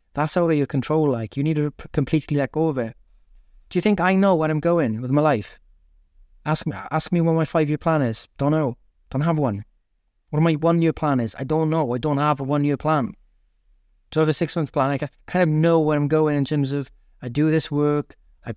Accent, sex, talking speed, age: British, male, 245 wpm, 20-39